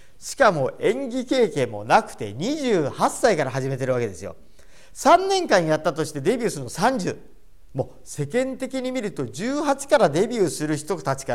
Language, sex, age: Japanese, male, 40-59